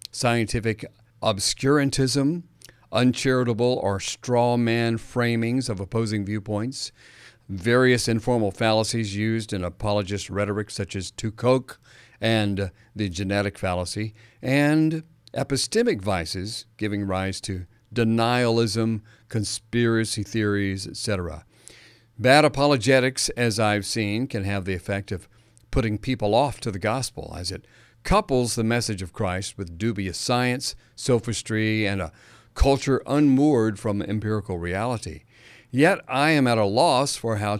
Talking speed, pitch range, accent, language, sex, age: 120 wpm, 105-125 Hz, American, English, male, 50-69